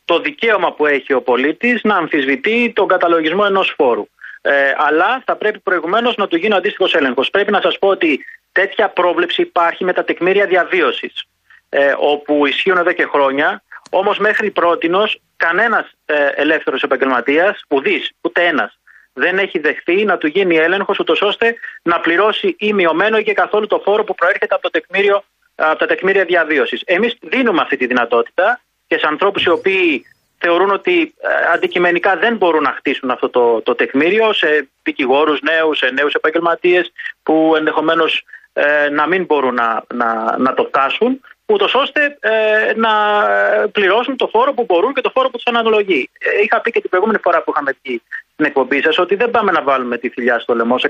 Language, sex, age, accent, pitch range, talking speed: Greek, male, 30-49, native, 150-230 Hz, 180 wpm